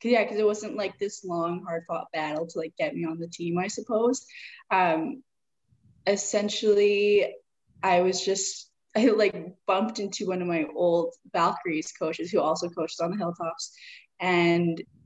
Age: 20-39